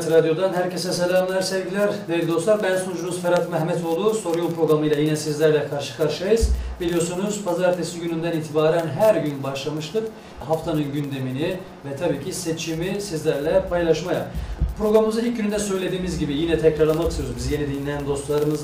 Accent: native